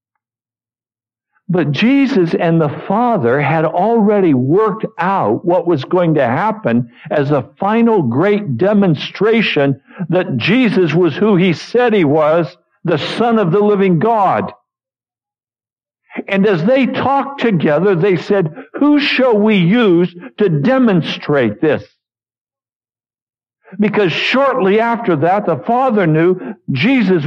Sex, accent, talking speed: male, American, 120 wpm